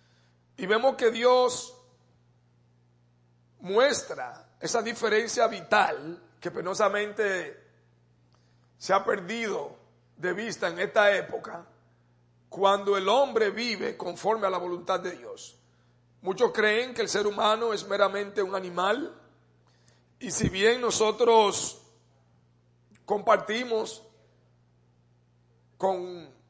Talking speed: 100 wpm